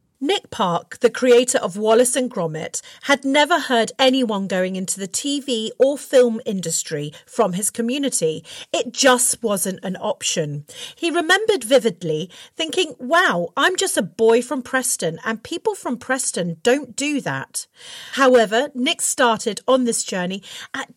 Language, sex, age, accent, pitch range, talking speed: English, female, 40-59, British, 195-280 Hz, 150 wpm